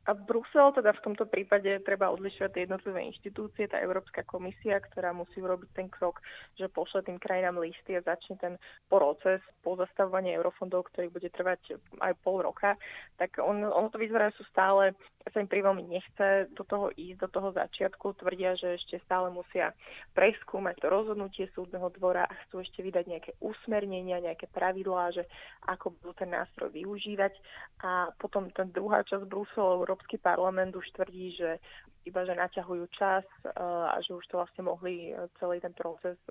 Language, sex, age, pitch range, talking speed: Slovak, female, 20-39, 180-200 Hz, 165 wpm